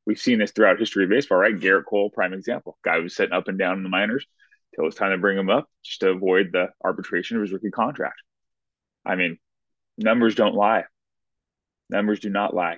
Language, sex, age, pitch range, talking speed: English, male, 20-39, 100-120 Hz, 225 wpm